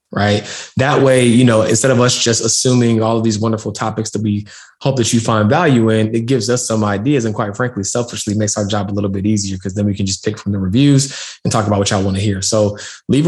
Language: English